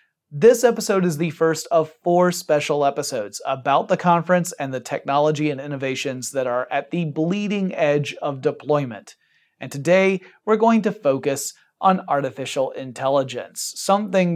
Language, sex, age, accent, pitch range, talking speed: English, male, 30-49, American, 135-175 Hz, 145 wpm